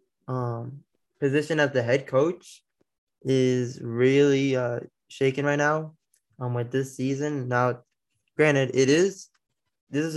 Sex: male